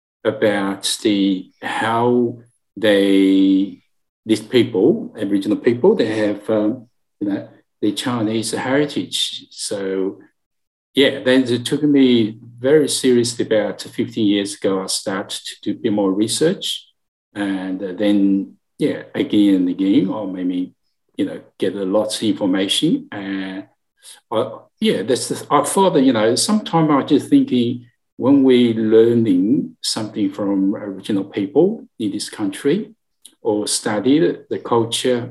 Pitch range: 100-130 Hz